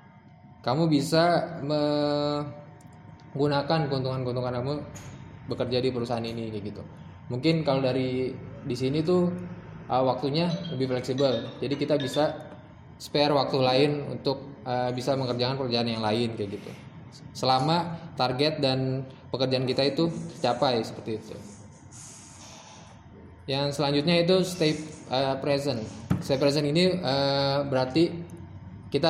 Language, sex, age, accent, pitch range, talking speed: Indonesian, male, 20-39, native, 120-145 Hz, 120 wpm